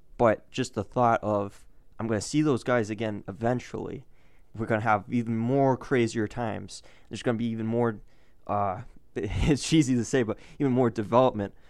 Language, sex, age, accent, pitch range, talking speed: English, male, 20-39, American, 100-120 Hz, 185 wpm